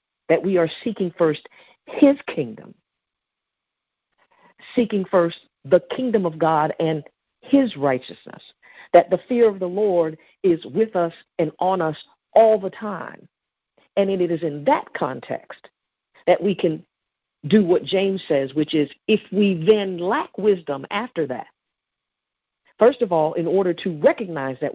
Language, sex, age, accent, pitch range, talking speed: English, female, 50-69, American, 150-195 Hz, 150 wpm